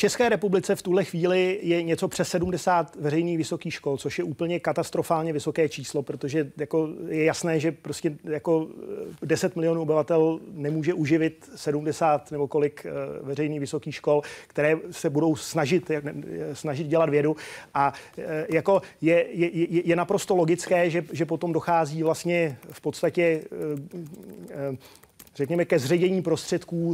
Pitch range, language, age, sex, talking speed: 155-175 Hz, Czech, 30-49, male, 140 wpm